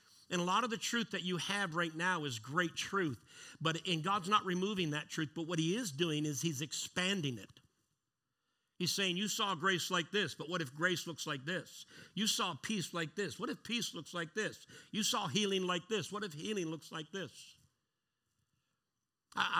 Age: 50-69